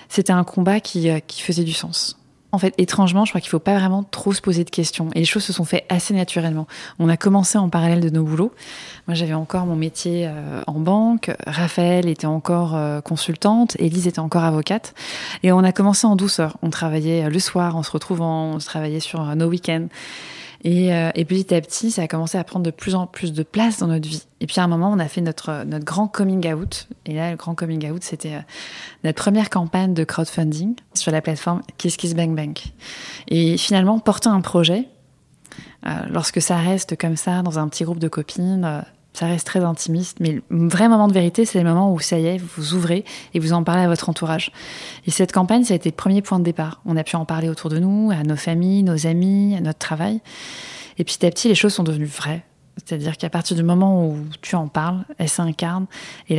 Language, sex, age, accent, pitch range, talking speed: French, female, 20-39, French, 160-190 Hz, 230 wpm